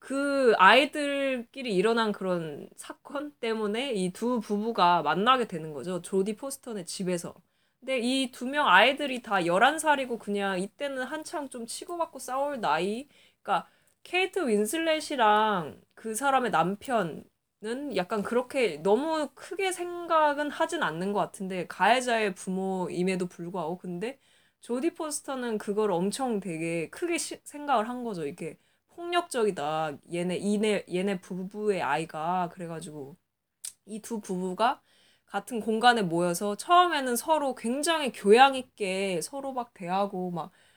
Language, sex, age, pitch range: Korean, female, 20-39, 185-265 Hz